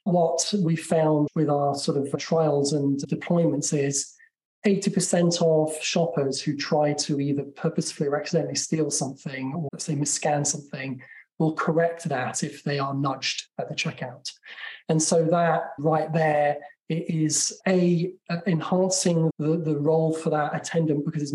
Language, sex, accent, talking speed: English, male, British, 150 wpm